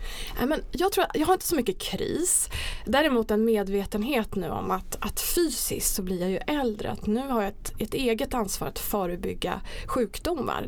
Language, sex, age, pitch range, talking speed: Swedish, female, 20-39, 195-250 Hz, 185 wpm